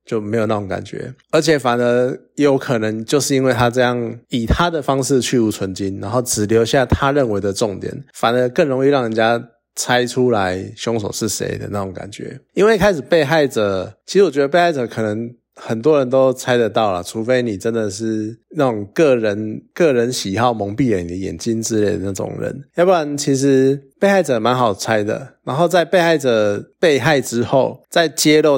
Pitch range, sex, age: 105-140 Hz, male, 20-39